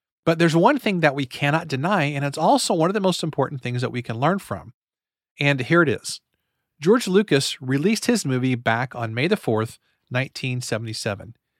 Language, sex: English, male